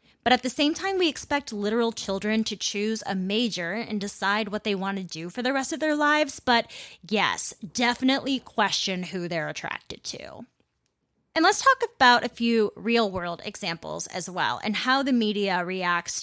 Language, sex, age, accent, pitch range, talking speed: English, female, 20-39, American, 185-240 Hz, 185 wpm